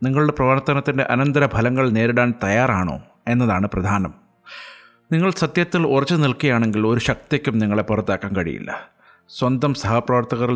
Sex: male